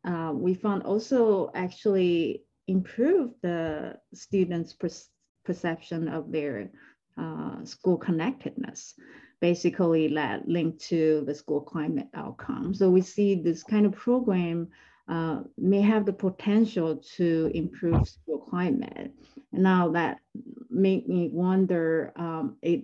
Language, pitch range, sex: English, 155-185 Hz, female